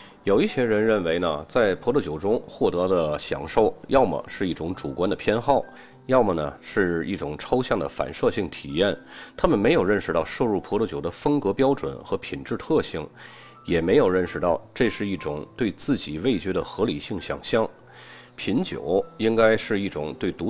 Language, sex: Chinese, male